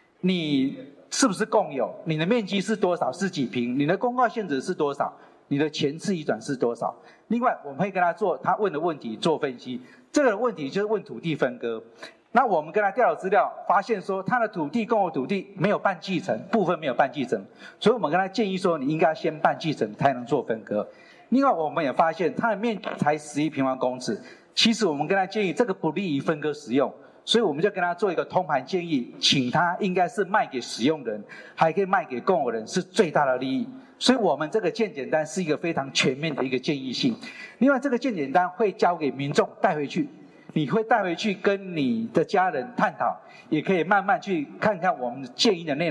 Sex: male